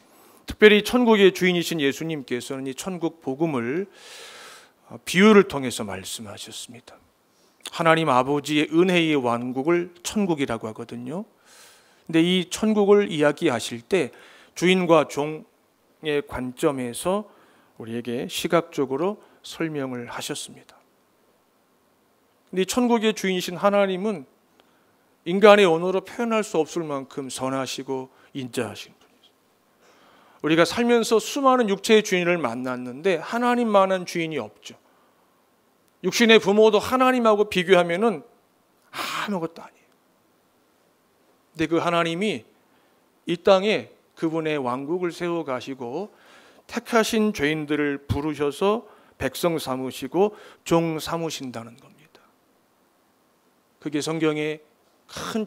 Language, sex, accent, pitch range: Korean, male, native, 135-200 Hz